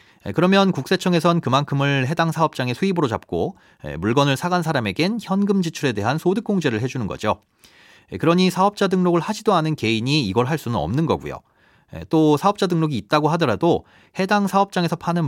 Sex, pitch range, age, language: male, 120-175 Hz, 30-49, Korean